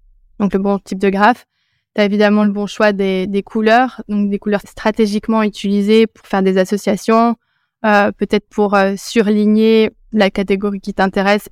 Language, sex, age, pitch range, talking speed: French, female, 20-39, 195-215 Hz, 170 wpm